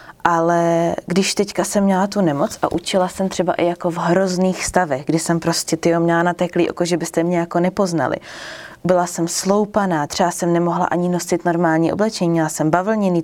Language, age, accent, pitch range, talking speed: Czech, 20-39, native, 170-200 Hz, 190 wpm